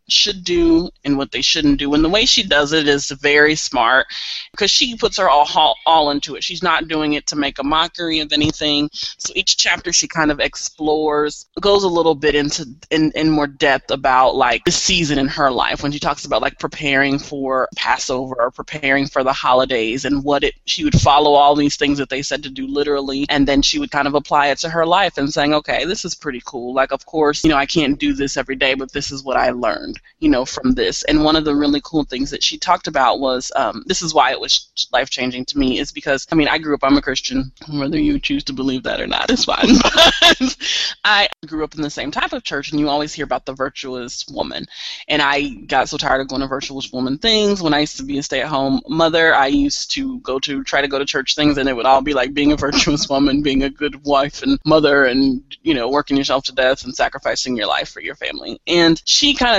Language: English